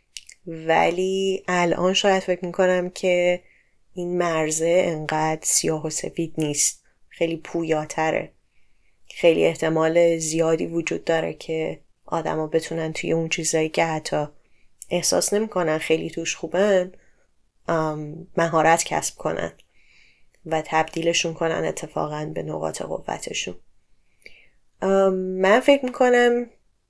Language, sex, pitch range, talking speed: Persian, female, 155-180 Hz, 105 wpm